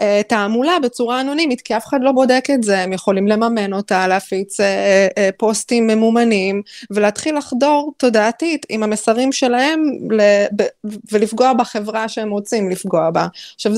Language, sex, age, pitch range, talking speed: Hebrew, female, 20-39, 210-275 Hz, 130 wpm